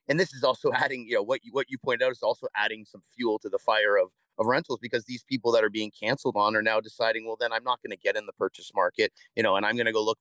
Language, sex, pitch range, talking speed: English, male, 110-175 Hz, 315 wpm